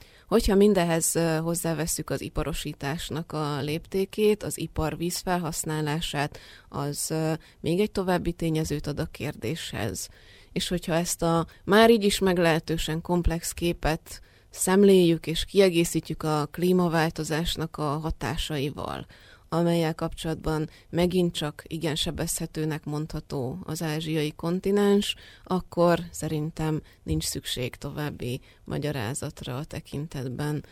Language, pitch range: Hungarian, 150-170 Hz